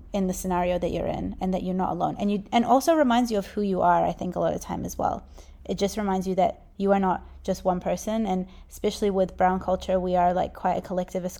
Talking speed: 270 wpm